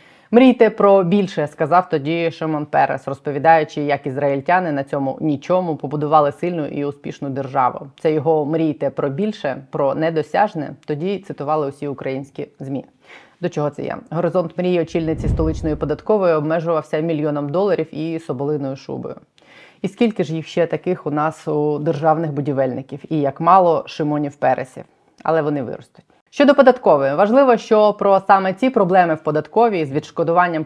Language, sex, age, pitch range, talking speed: Ukrainian, female, 30-49, 145-180 Hz, 150 wpm